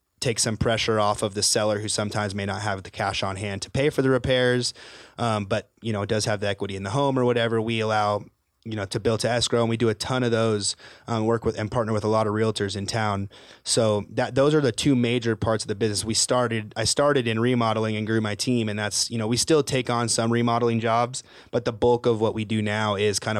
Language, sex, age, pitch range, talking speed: English, male, 20-39, 100-115 Hz, 265 wpm